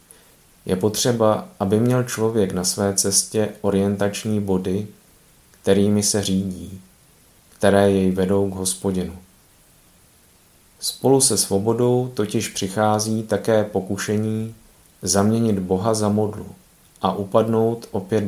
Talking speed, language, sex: 105 wpm, Czech, male